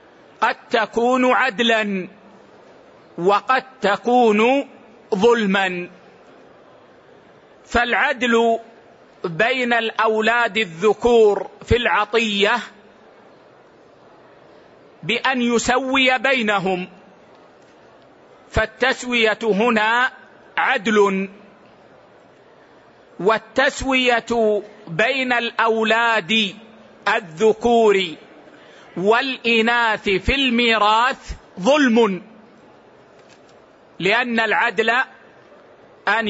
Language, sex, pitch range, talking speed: Arabic, male, 205-240 Hz, 50 wpm